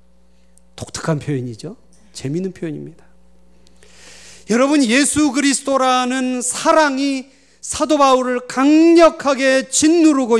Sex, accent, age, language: male, native, 40-59, Korean